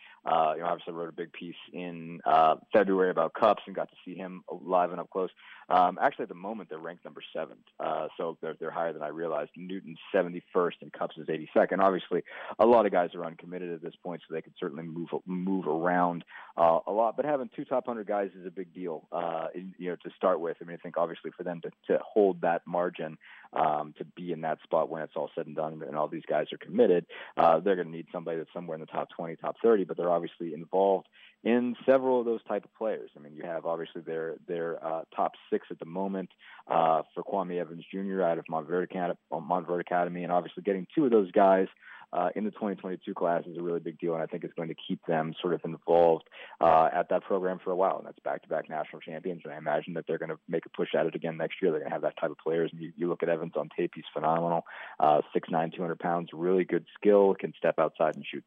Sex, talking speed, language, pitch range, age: male, 250 wpm, English, 80-95 Hz, 30-49